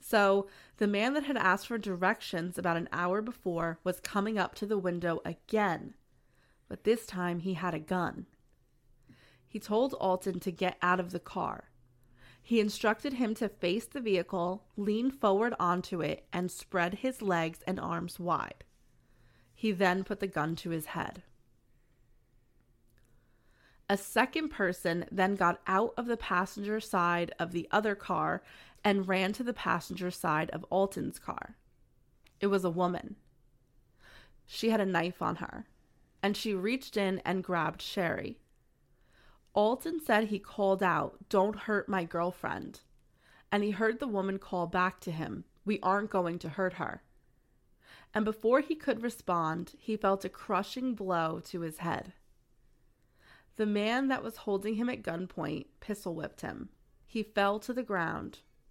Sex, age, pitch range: female, 20-39, 170-215 Hz